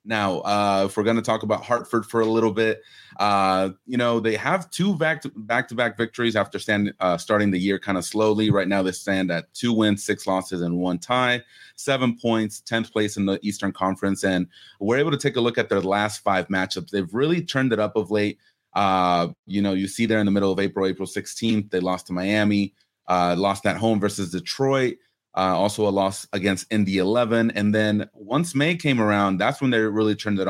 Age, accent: 30-49, American